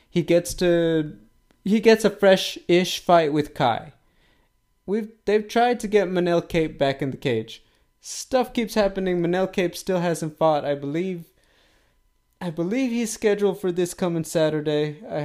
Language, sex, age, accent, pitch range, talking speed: English, male, 20-39, American, 145-180 Hz, 160 wpm